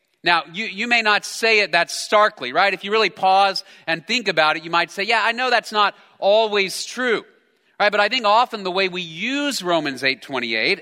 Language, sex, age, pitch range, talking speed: English, male, 40-59, 140-200 Hz, 220 wpm